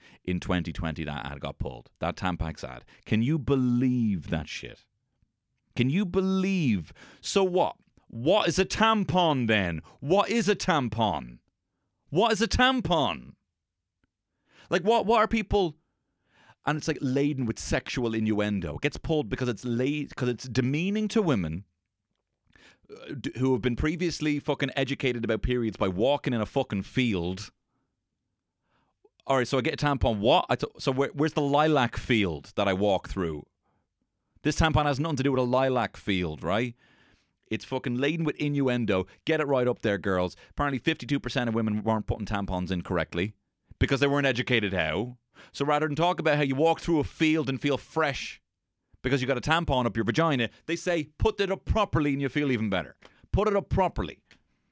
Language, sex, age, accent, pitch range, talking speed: English, male, 30-49, British, 105-150 Hz, 175 wpm